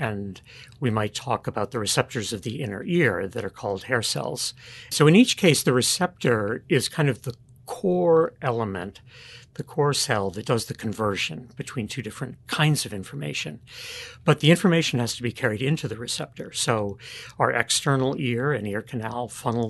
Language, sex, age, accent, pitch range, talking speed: English, male, 60-79, American, 110-135 Hz, 180 wpm